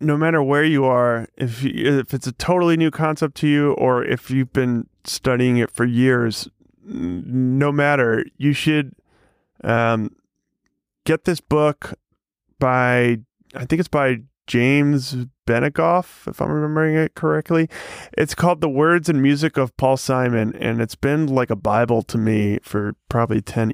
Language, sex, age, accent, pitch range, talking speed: English, male, 30-49, American, 115-150 Hz, 160 wpm